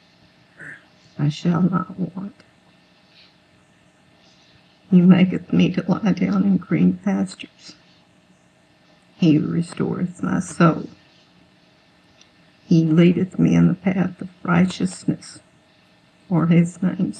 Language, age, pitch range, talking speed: English, 60-79, 150-170 Hz, 100 wpm